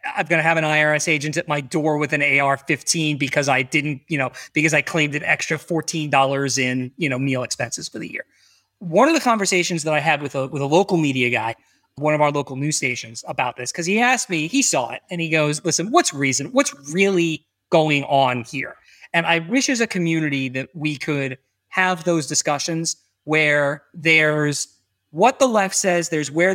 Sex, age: male, 30-49